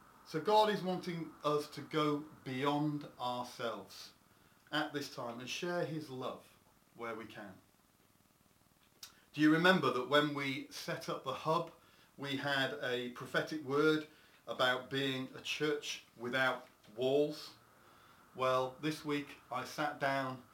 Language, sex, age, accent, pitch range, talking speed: English, male, 40-59, British, 125-150 Hz, 135 wpm